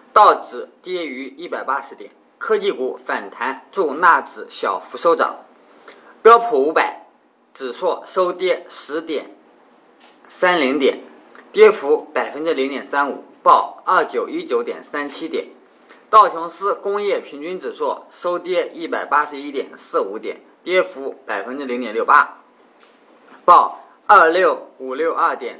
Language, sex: Chinese, male